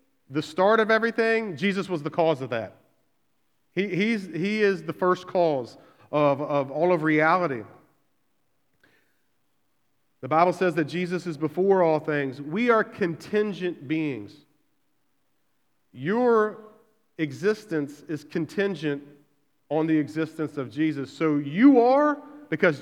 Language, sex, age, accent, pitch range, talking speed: English, male, 40-59, American, 150-195 Hz, 125 wpm